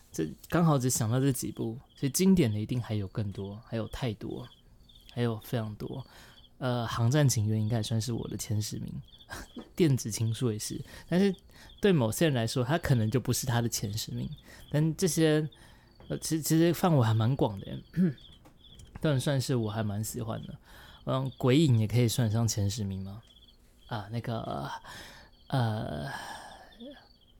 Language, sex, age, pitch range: Chinese, male, 20-39, 110-140 Hz